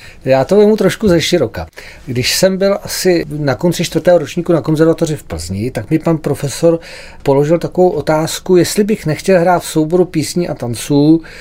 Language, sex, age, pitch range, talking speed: Czech, male, 40-59, 140-170 Hz, 180 wpm